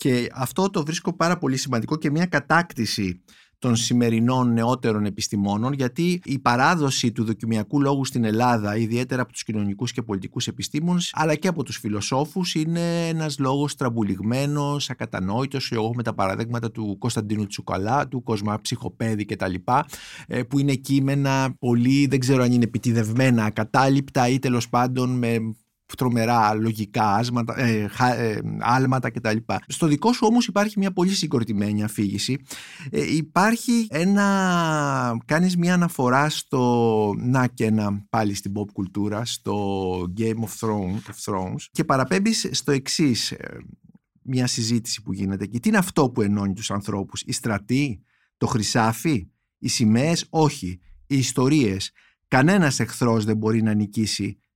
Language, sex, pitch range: Greek, male, 110-140 Hz